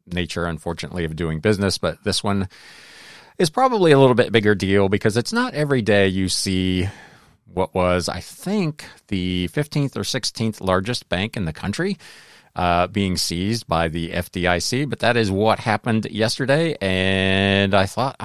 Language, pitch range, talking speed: English, 95-130 Hz, 165 wpm